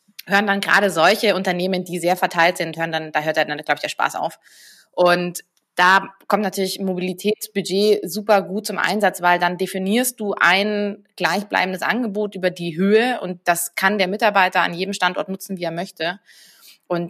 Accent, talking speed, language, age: German, 185 wpm, German, 20-39